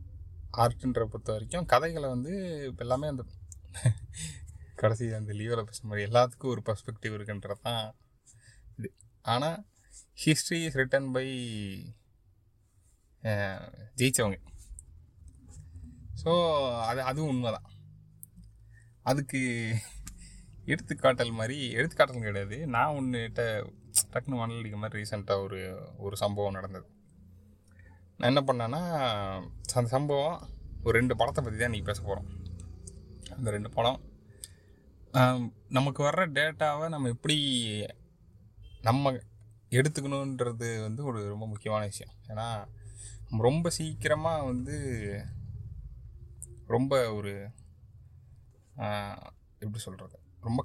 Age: 20-39